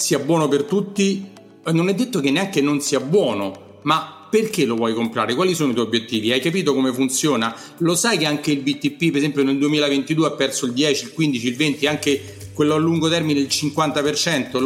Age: 40-59